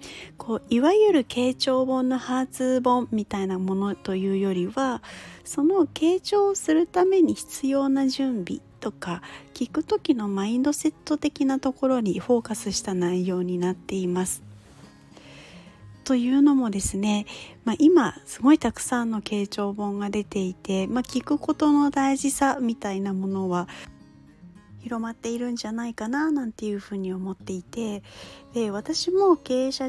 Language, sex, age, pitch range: Japanese, female, 40-59, 190-270 Hz